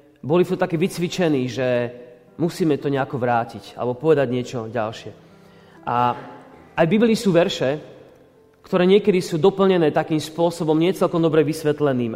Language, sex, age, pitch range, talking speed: Slovak, male, 40-59, 130-175 Hz, 135 wpm